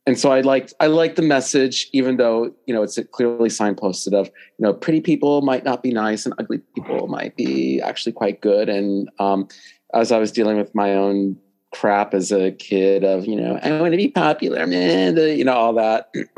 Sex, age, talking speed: male, 30-49, 215 wpm